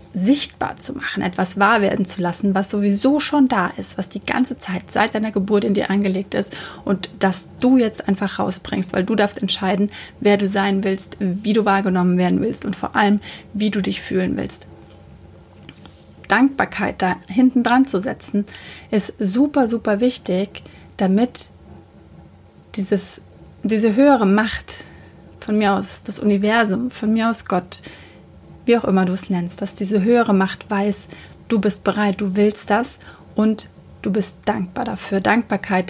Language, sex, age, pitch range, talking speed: German, female, 30-49, 190-220 Hz, 160 wpm